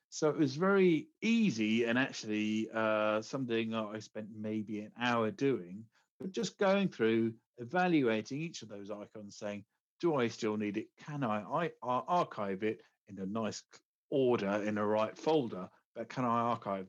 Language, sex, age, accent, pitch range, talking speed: English, male, 50-69, British, 105-135 Hz, 170 wpm